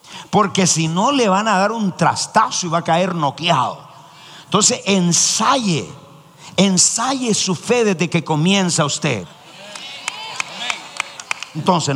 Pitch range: 155-220 Hz